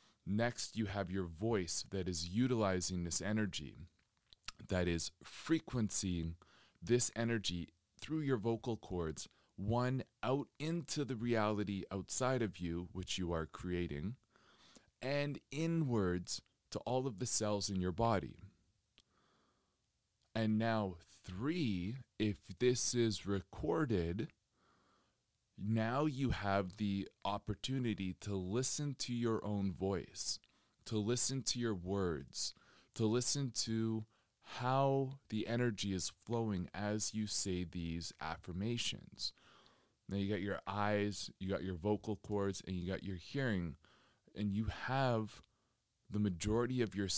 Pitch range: 95-120 Hz